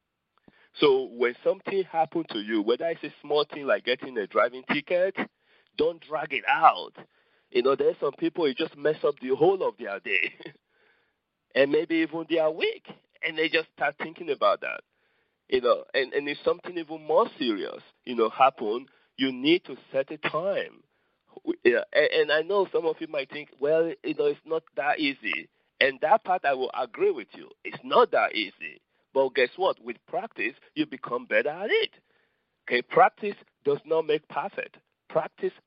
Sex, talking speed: male, 185 wpm